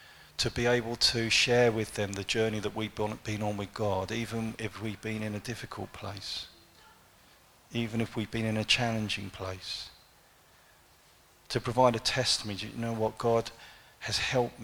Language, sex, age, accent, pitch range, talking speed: English, male, 40-59, British, 100-120 Hz, 170 wpm